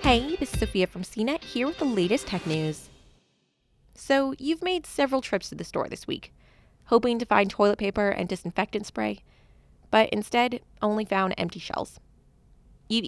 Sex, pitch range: female, 185-255 Hz